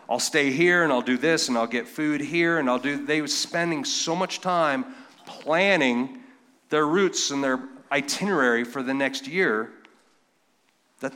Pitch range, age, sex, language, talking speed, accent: 135-180 Hz, 40-59, male, English, 170 wpm, American